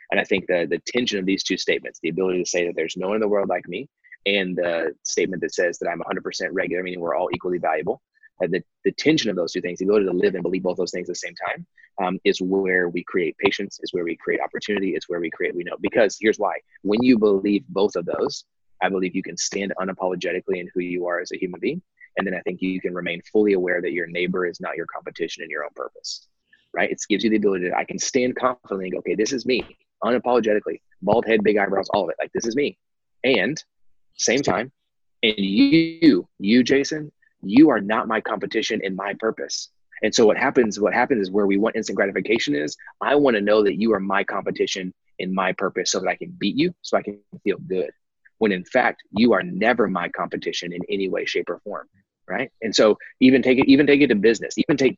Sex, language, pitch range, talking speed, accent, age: male, English, 90-135 Hz, 240 wpm, American, 20-39